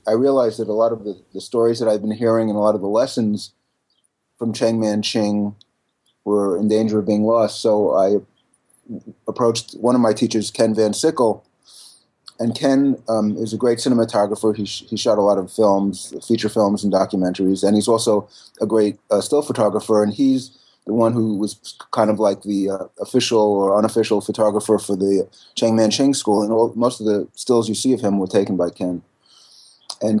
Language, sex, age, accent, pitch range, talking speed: English, male, 30-49, American, 100-115 Hz, 200 wpm